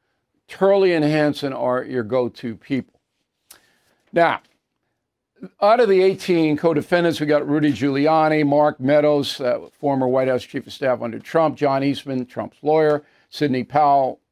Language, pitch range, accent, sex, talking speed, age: English, 135-165 Hz, American, male, 145 wpm, 50-69